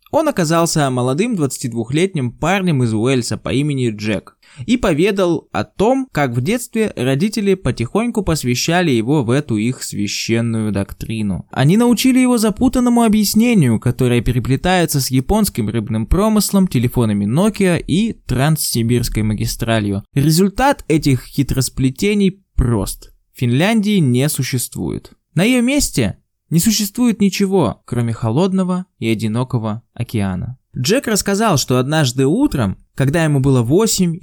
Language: Russian